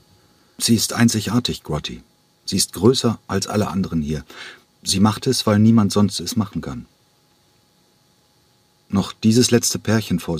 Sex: male